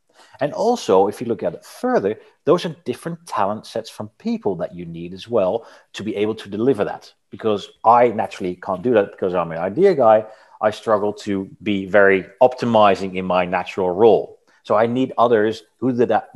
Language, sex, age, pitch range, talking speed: English, male, 30-49, 95-125 Hz, 200 wpm